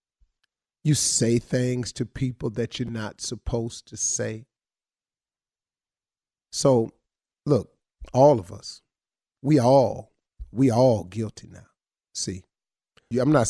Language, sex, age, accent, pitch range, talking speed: English, male, 40-59, American, 115-140 Hz, 110 wpm